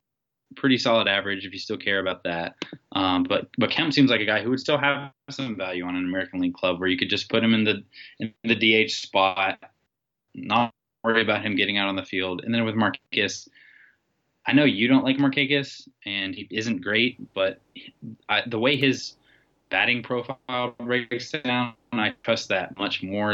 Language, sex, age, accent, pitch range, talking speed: English, male, 20-39, American, 95-115 Hz, 200 wpm